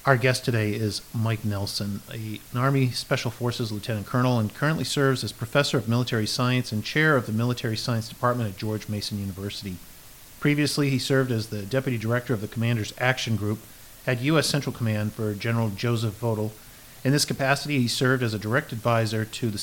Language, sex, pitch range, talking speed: English, male, 110-130 Hz, 190 wpm